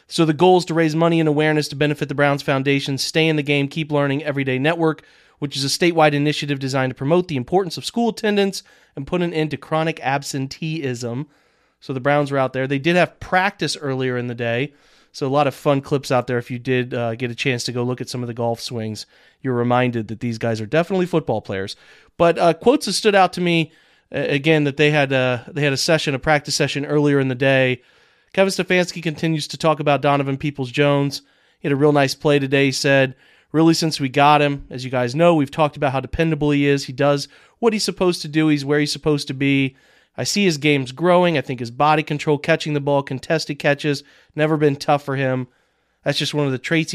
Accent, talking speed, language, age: American, 240 wpm, English, 30-49